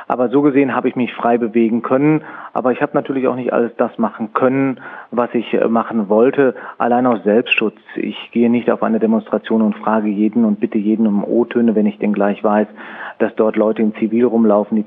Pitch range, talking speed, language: 105-120 Hz, 210 wpm, German